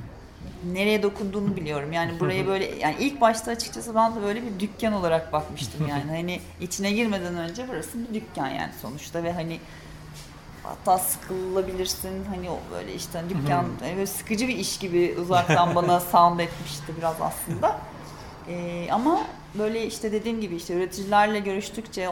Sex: female